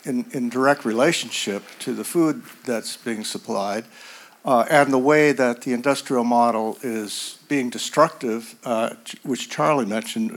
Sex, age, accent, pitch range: male, 60-79, American, 120-145 Hz